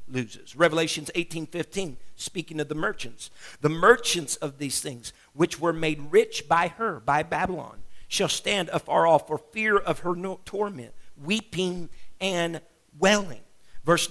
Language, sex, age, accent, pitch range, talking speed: English, male, 50-69, American, 170-210 Hz, 145 wpm